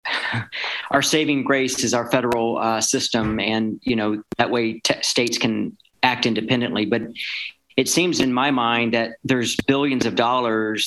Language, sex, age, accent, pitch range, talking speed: English, male, 40-59, American, 110-130 Hz, 160 wpm